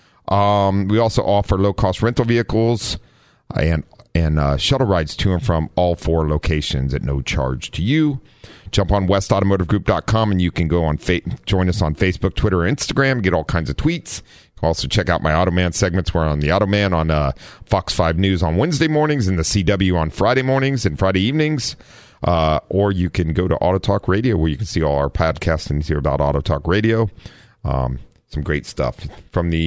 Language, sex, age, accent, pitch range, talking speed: English, male, 40-59, American, 80-100 Hz, 210 wpm